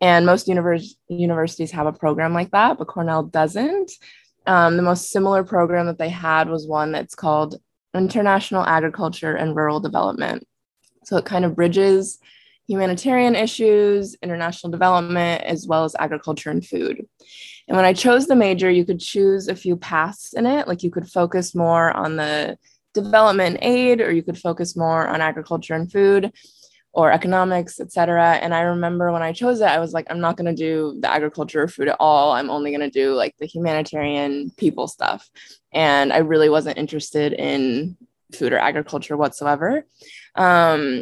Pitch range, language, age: 160-190 Hz, English, 20-39